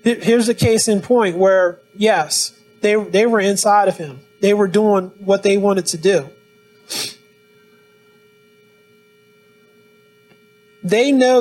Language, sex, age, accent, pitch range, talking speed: English, male, 30-49, American, 175-210 Hz, 120 wpm